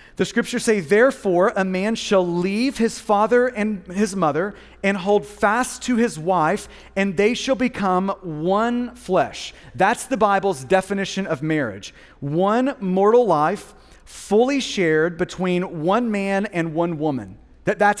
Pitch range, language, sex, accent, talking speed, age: 180-230 Hz, English, male, American, 145 wpm, 30-49